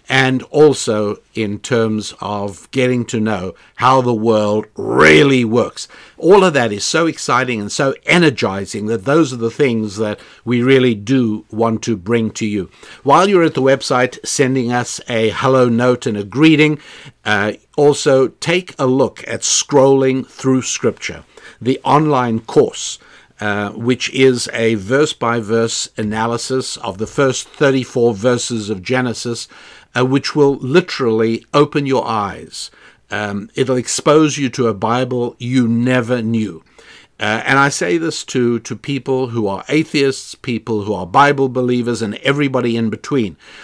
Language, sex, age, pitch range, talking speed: English, male, 60-79, 115-135 Hz, 155 wpm